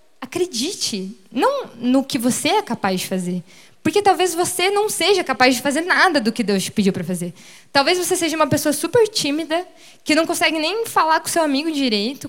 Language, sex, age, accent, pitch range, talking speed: Portuguese, female, 20-39, Brazilian, 250-360 Hz, 200 wpm